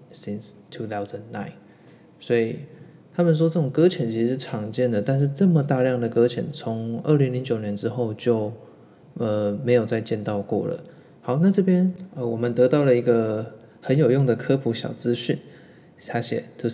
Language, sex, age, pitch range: Chinese, male, 20-39, 115-155 Hz